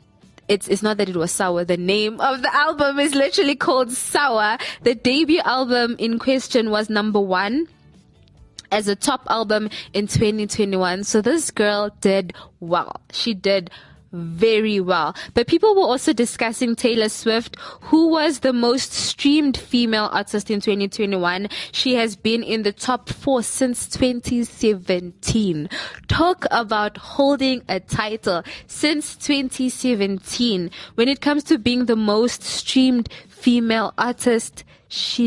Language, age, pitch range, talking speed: English, 20-39, 205-255 Hz, 145 wpm